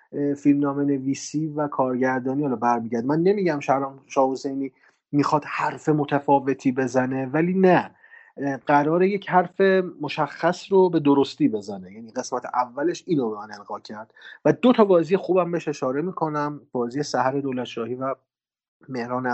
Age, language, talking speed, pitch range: 30-49, Persian, 135 wpm, 120-155 Hz